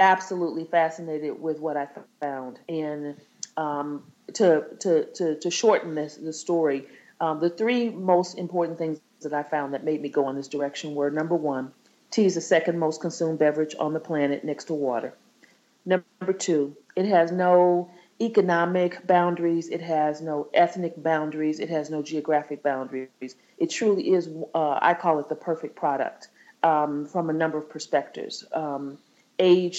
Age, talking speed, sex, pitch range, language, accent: 40-59, 170 wpm, female, 150-180 Hz, English, American